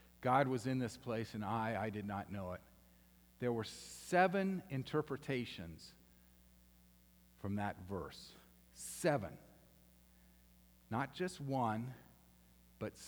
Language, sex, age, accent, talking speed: English, male, 50-69, American, 110 wpm